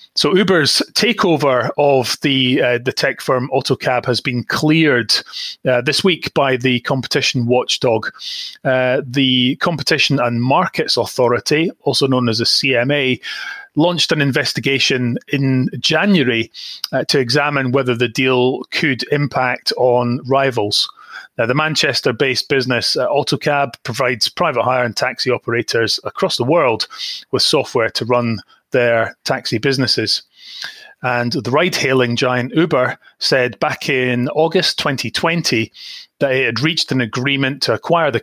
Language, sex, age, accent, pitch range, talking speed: English, male, 30-49, British, 125-145 Hz, 135 wpm